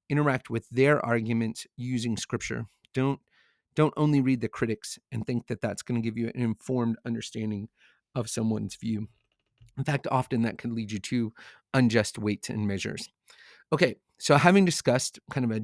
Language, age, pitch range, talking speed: English, 30-49, 115-140 Hz, 175 wpm